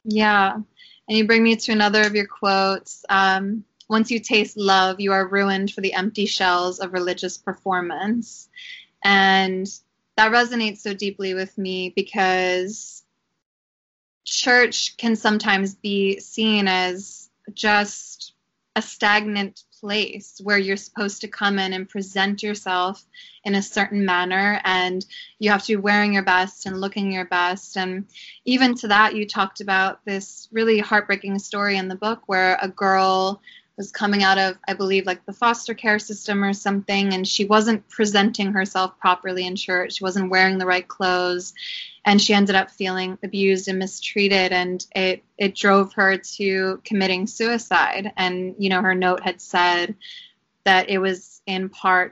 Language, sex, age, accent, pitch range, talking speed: English, female, 20-39, American, 185-210 Hz, 160 wpm